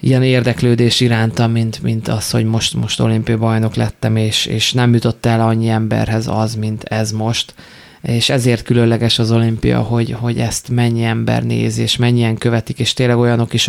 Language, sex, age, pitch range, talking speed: Hungarian, male, 20-39, 115-125 Hz, 180 wpm